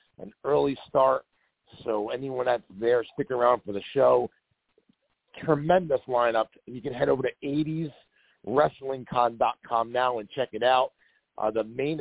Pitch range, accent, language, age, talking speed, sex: 120-150 Hz, American, English, 50-69, 140 wpm, male